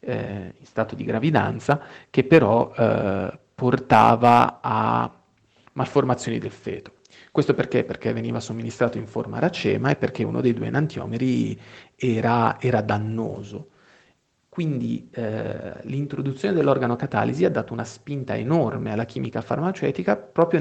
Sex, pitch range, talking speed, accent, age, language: male, 115-135 Hz, 125 wpm, native, 40-59, Italian